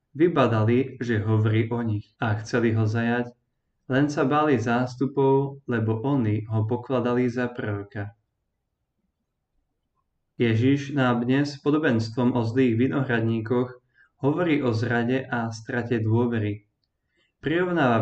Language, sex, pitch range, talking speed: Slovak, male, 115-130 Hz, 110 wpm